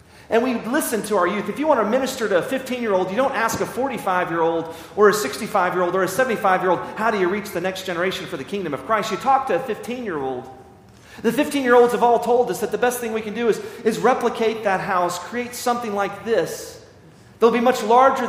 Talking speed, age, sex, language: 225 wpm, 40-59, male, English